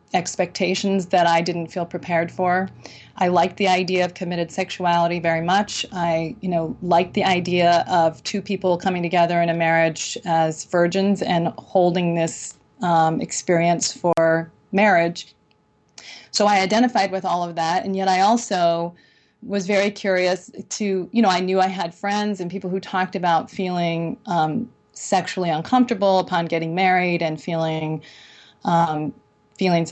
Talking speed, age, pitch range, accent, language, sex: 150 wpm, 30-49, 170-195 Hz, American, English, female